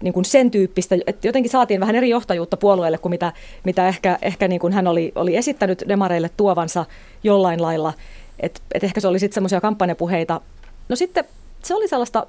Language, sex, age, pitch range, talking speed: Finnish, female, 30-49, 165-205 Hz, 190 wpm